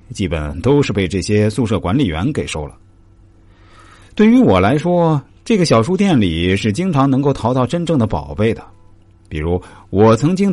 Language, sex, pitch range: Chinese, male, 90-135 Hz